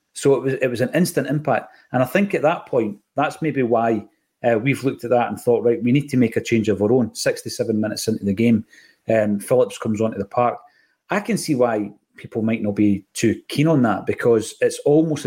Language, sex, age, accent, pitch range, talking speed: English, male, 30-49, British, 115-140 Hz, 240 wpm